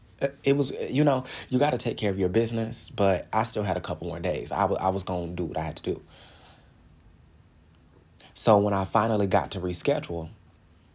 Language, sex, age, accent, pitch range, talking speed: English, male, 30-49, American, 85-105 Hz, 210 wpm